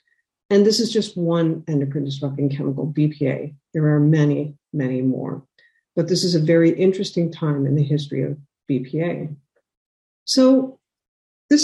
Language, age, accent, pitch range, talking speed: English, 50-69, American, 155-195 Hz, 145 wpm